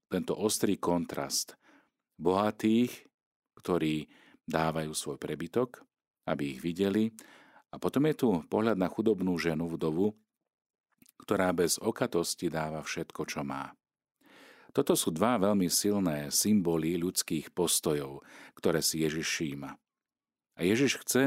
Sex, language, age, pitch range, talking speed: male, Slovak, 40-59, 80-105 Hz, 120 wpm